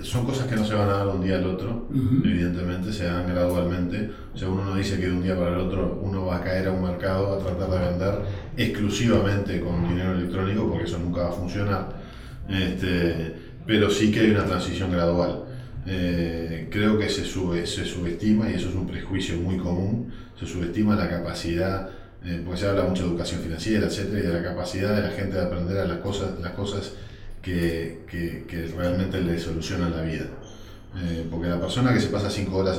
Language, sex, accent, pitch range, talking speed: Spanish, male, Argentinian, 90-105 Hz, 210 wpm